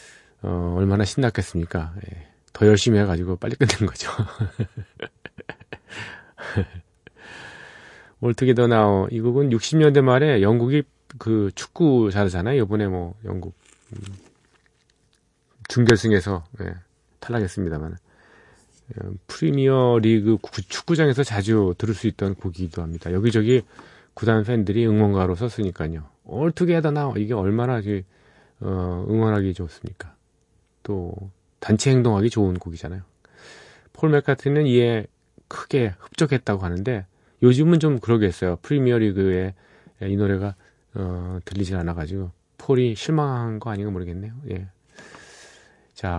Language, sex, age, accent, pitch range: Korean, male, 40-59, native, 95-125 Hz